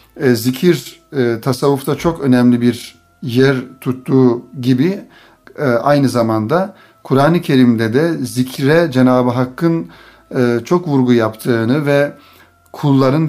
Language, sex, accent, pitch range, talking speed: Turkish, male, native, 125-145 Hz, 95 wpm